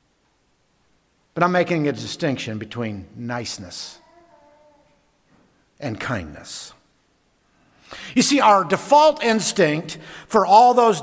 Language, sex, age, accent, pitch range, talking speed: English, male, 50-69, American, 155-245 Hz, 85 wpm